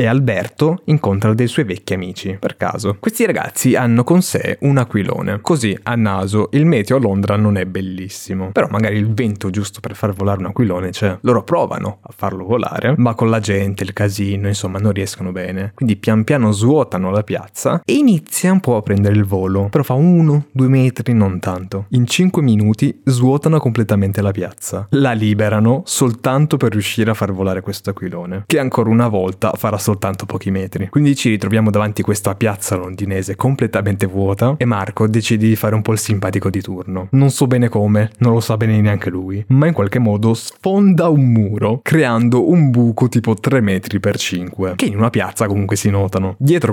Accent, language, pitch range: native, Italian, 100-125 Hz